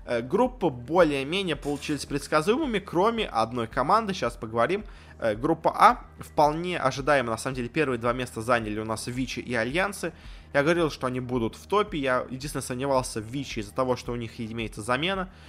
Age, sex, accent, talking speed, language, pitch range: 20-39, male, native, 175 wpm, Russian, 120-160 Hz